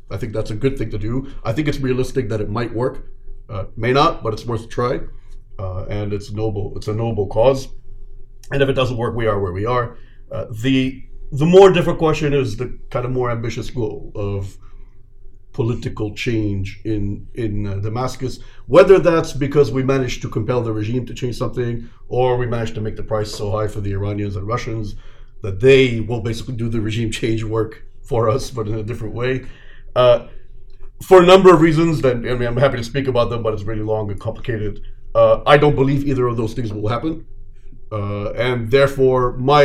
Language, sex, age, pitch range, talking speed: English, male, 40-59, 105-130 Hz, 210 wpm